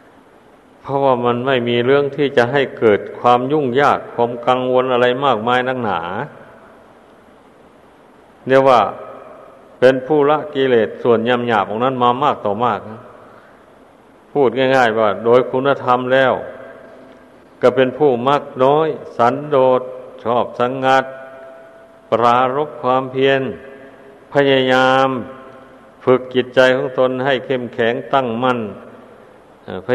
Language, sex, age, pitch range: Thai, male, 60-79, 125-135 Hz